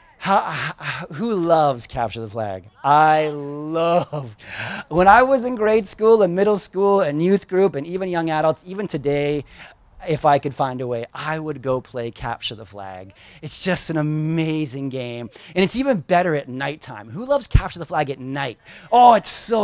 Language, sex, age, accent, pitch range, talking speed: English, male, 30-49, American, 150-200 Hz, 185 wpm